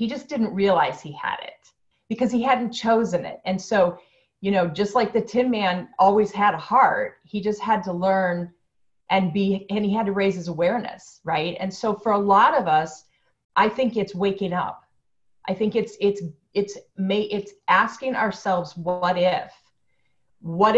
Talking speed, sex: 185 wpm, female